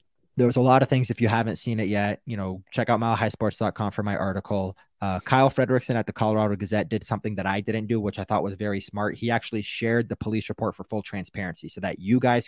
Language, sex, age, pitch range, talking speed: English, male, 20-39, 95-115 Hz, 250 wpm